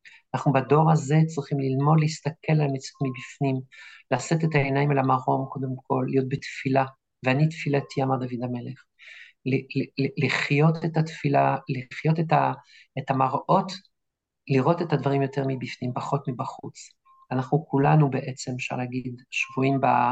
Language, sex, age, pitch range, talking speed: Hebrew, male, 50-69, 130-155 Hz, 135 wpm